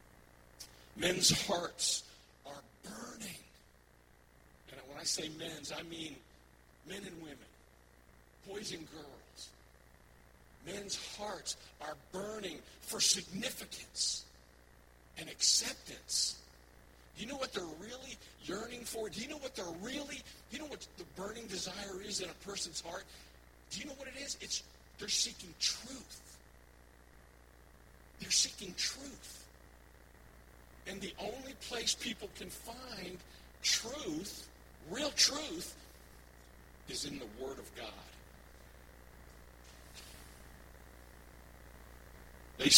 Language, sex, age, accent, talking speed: English, male, 50-69, American, 110 wpm